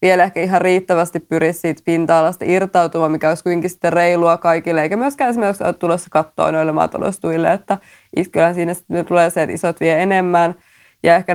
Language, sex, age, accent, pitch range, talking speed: Finnish, female, 20-39, native, 170-190 Hz, 175 wpm